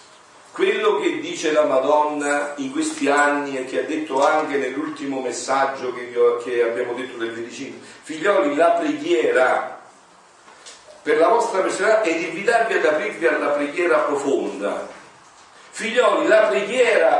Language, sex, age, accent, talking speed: Italian, male, 40-59, native, 140 wpm